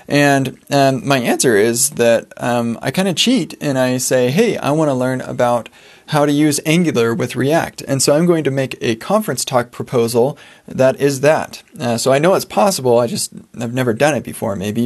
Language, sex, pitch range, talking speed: English, male, 125-155 Hz, 215 wpm